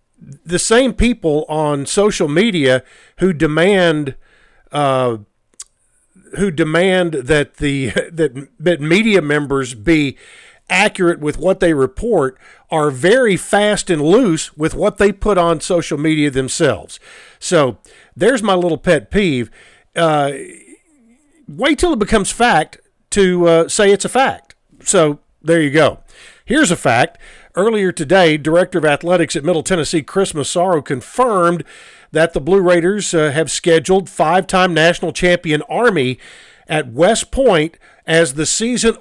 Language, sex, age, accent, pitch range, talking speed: English, male, 50-69, American, 155-195 Hz, 135 wpm